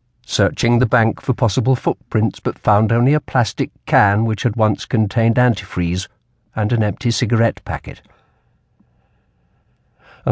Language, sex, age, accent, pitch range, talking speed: English, male, 50-69, British, 100-120 Hz, 135 wpm